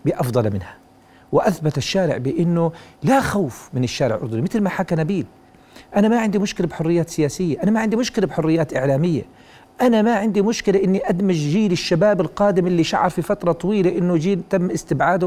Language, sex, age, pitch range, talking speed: Arabic, male, 40-59, 130-185 Hz, 175 wpm